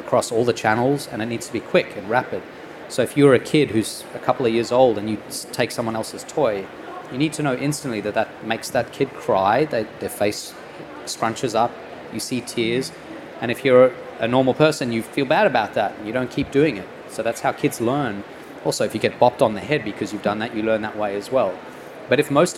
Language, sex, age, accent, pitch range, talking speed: English, male, 30-49, Australian, 115-145 Hz, 240 wpm